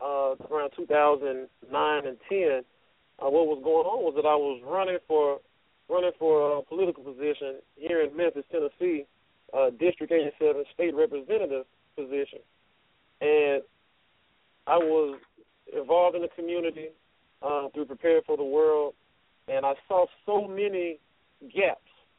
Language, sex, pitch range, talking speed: English, male, 145-230 Hz, 135 wpm